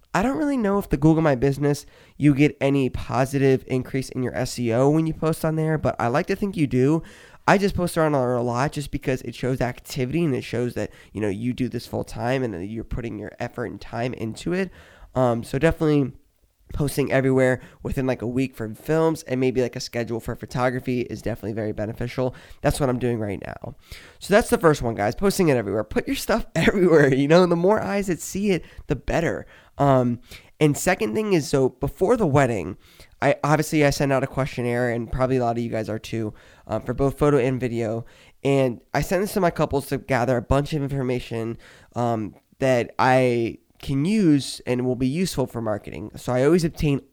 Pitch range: 115-150 Hz